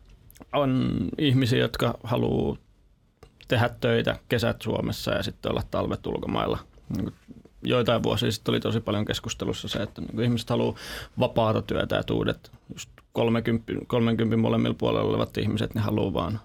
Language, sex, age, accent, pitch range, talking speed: Finnish, male, 30-49, native, 110-120 Hz, 135 wpm